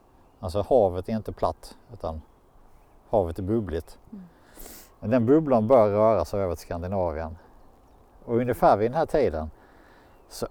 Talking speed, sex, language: 135 wpm, male, Swedish